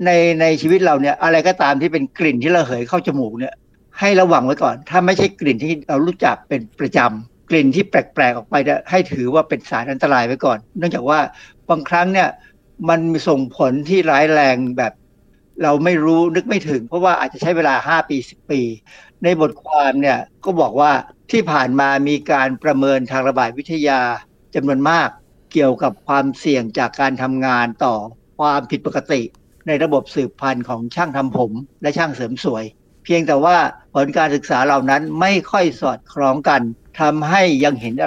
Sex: male